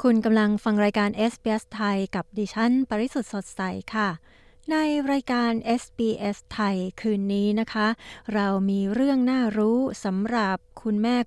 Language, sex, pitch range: Thai, female, 185-220 Hz